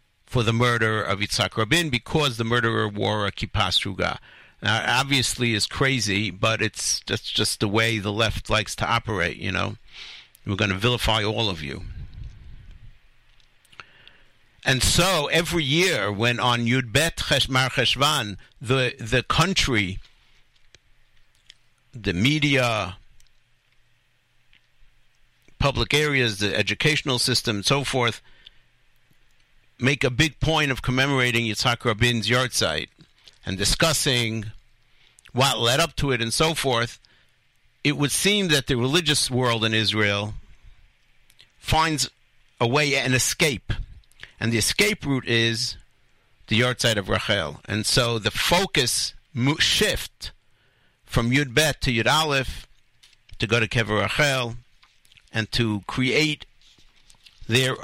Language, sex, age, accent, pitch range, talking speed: English, male, 60-79, American, 110-135 Hz, 125 wpm